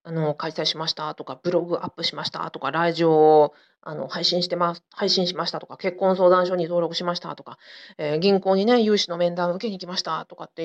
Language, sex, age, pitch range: Japanese, female, 40-59, 165-225 Hz